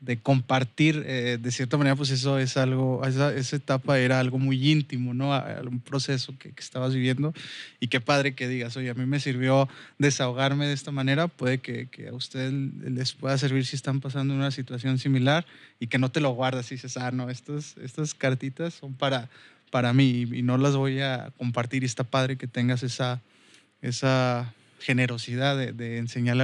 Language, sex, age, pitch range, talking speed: Spanish, male, 20-39, 125-145 Hz, 200 wpm